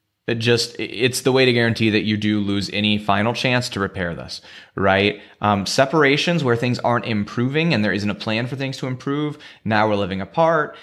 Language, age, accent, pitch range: English, 30-49, American, 105-130 Hz